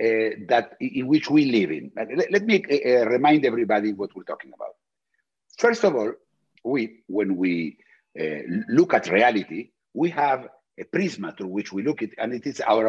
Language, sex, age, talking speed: English, male, 60-79, 185 wpm